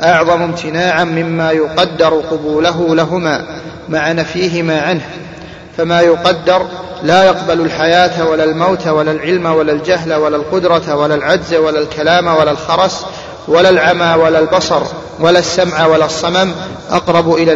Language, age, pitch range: Arabic, 40-59, 160-180 Hz